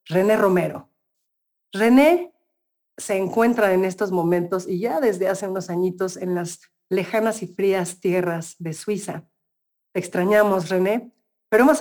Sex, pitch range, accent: female, 175-225 Hz, Mexican